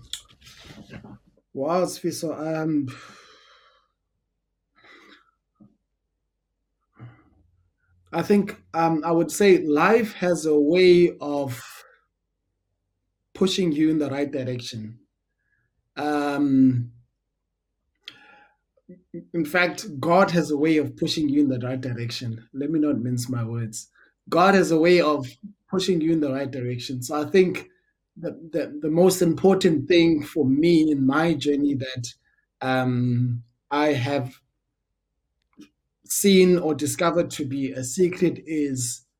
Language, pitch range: English, 125-160 Hz